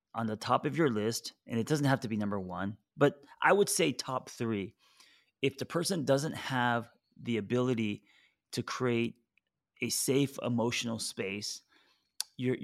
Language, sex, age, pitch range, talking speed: English, male, 30-49, 105-130 Hz, 160 wpm